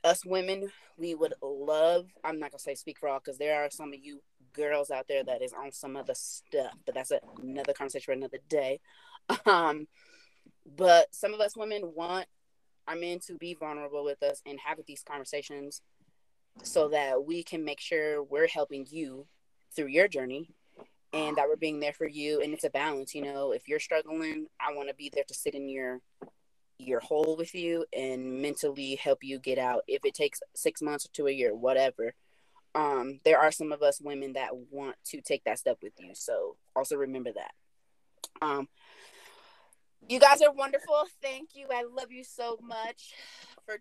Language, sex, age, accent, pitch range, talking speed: English, female, 20-39, American, 145-215 Hz, 195 wpm